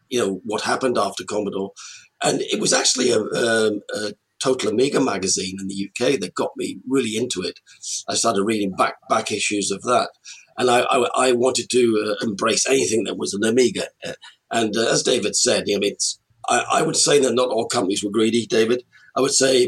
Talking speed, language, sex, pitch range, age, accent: 210 wpm, English, male, 100-130 Hz, 40-59, British